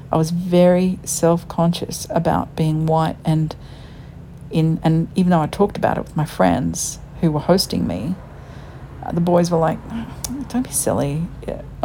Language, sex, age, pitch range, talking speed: English, female, 50-69, 145-175 Hz, 165 wpm